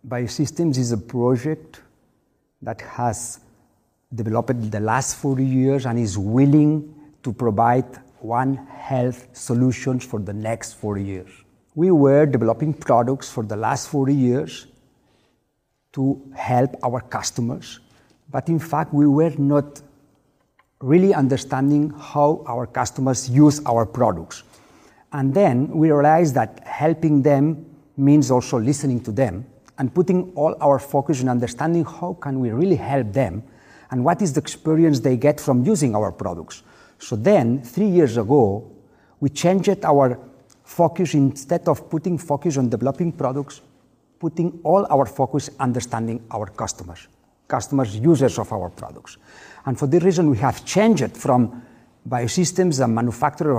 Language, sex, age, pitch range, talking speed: Romanian, male, 50-69, 120-150 Hz, 140 wpm